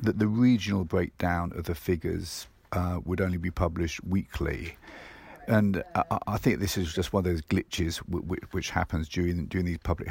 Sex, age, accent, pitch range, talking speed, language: male, 50-69, British, 85-100 Hz, 180 wpm, English